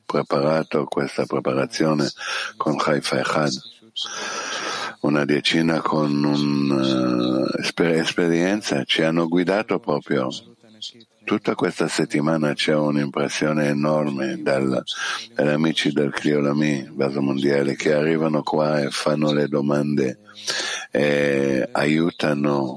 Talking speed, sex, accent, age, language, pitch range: 100 wpm, male, native, 60-79, Italian, 70-100 Hz